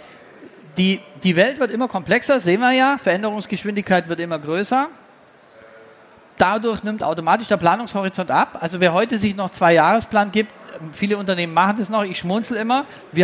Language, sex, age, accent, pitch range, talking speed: German, male, 40-59, German, 160-215 Hz, 165 wpm